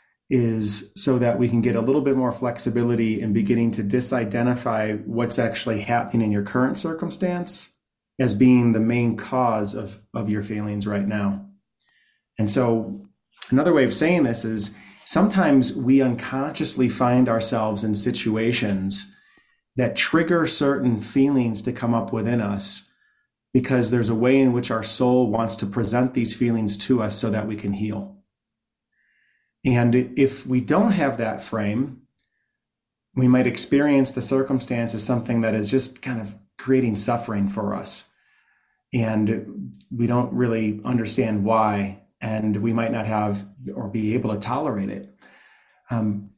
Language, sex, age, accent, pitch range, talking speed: English, male, 30-49, American, 105-125 Hz, 155 wpm